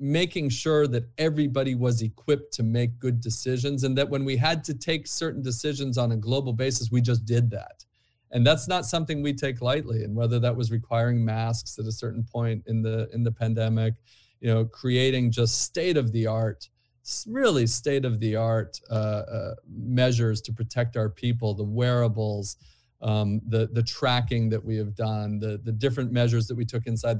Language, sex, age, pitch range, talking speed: English, male, 40-59, 110-135 Hz, 180 wpm